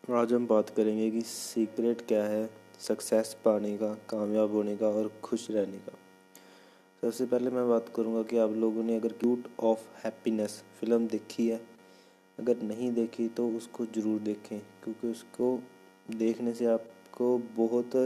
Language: Hindi